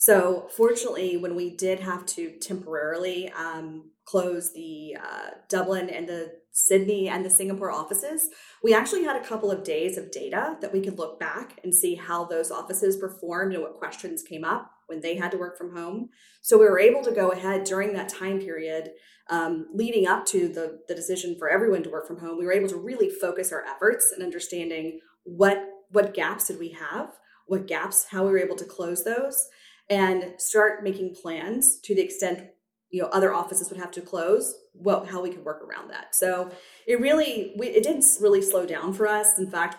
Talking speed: 205 wpm